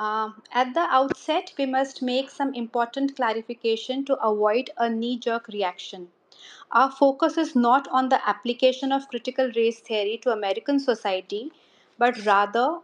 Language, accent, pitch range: Hindi, native, 225-275 Hz